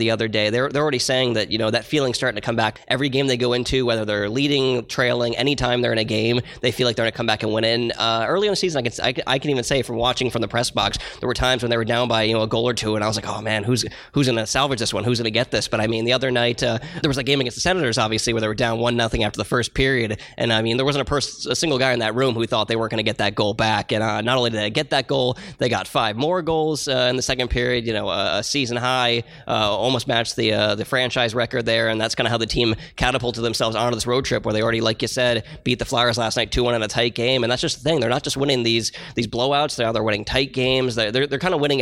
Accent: American